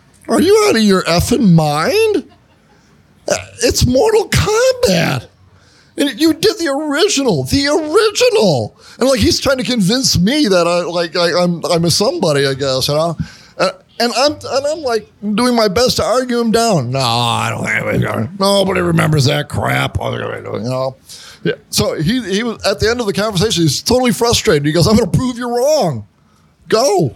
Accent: American